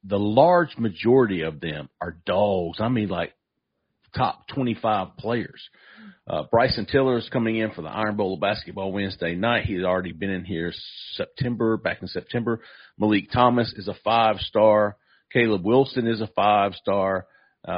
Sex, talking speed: male, 160 wpm